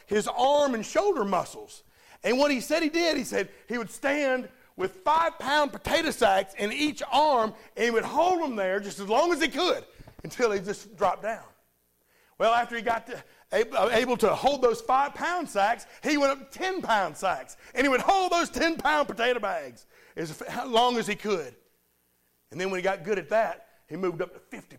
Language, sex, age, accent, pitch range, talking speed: English, male, 40-59, American, 200-285 Hz, 195 wpm